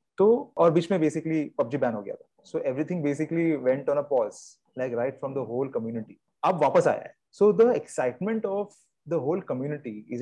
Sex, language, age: male, English, 30-49